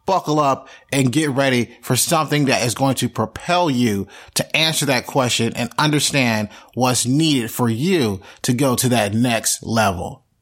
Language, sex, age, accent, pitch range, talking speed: English, male, 30-49, American, 120-160 Hz, 165 wpm